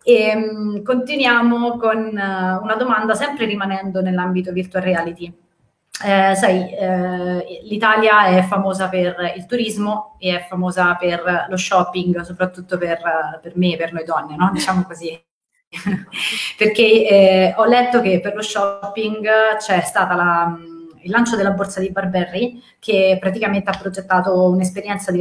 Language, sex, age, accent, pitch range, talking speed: Italian, female, 30-49, native, 180-220 Hz, 140 wpm